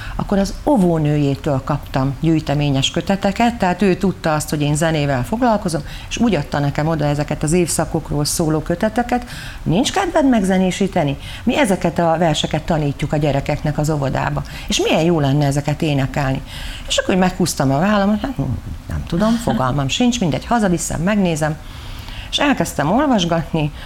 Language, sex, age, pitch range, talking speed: Hungarian, female, 40-59, 150-190 Hz, 150 wpm